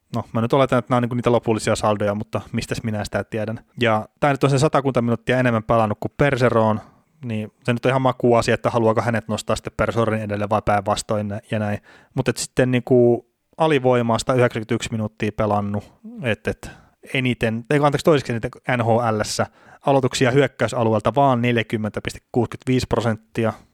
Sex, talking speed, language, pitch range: male, 165 wpm, Finnish, 105-120 Hz